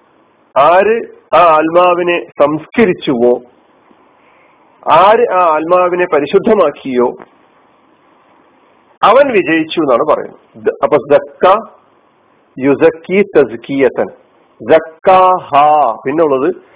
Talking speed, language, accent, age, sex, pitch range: 40 wpm, Malayalam, native, 50-69, male, 140-190 Hz